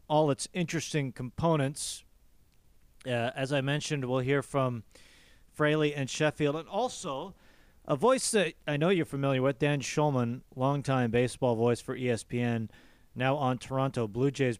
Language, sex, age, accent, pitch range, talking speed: English, male, 40-59, American, 120-155 Hz, 150 wpm